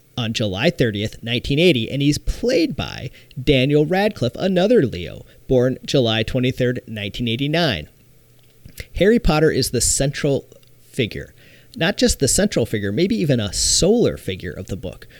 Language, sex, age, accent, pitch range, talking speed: English, male, 40-59, American, 110-140 Hz, 140 wpm